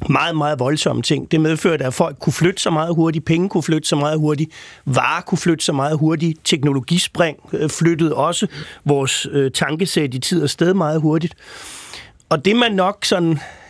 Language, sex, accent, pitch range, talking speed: Danish, male, native, 150-180 Hz, 185 wpm